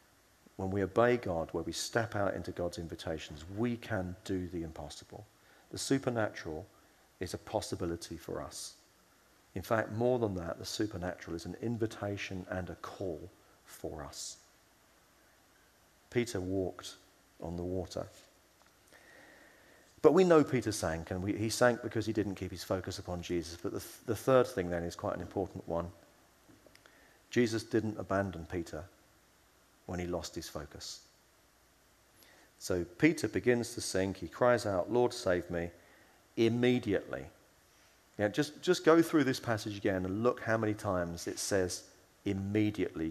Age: 40-59